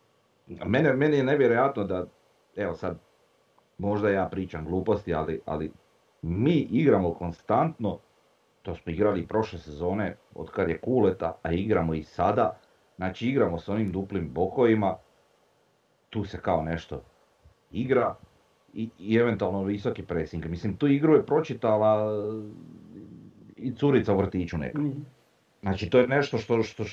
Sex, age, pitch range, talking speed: male, 40-59, 95-120 Hz, 135 wpm